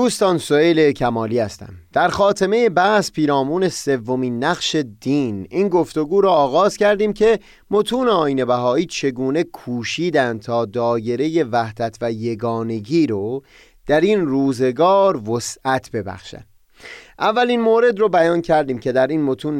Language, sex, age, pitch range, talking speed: Persian, male, 30-49, 120-175 Hz, 125 wpm